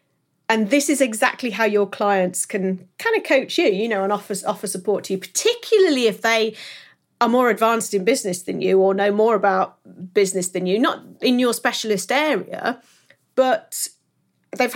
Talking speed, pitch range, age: 180 wpm, 190-255 Hz, 40-59